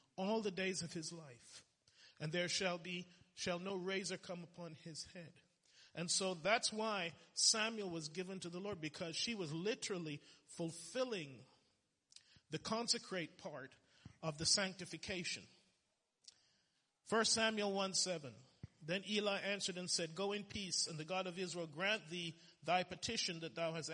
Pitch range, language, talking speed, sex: 160-205 Hz, English, 155 wpm, male